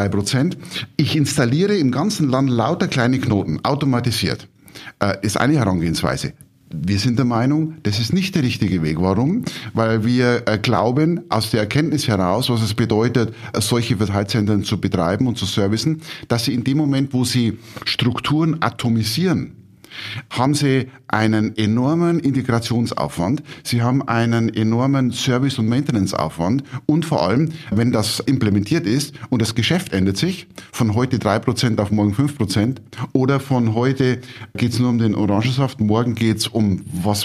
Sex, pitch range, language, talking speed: male, 110-135 Hz, German, 150 wpm